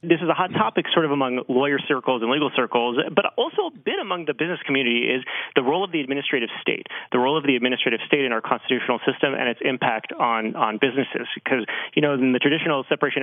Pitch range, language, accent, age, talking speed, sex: 120-160 Hz, English, American, 30-49, 230 wpm, male